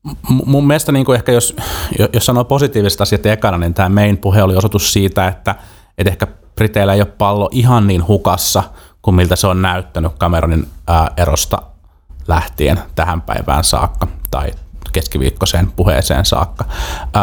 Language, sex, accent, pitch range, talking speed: Finnish, male, native, 85-100 Hz, 145 wpm